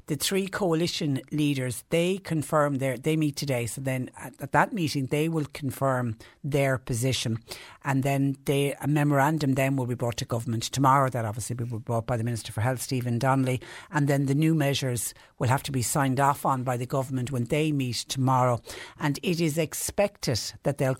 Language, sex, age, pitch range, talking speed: English, female, 60-79, 130-145 Hz, 195 wpm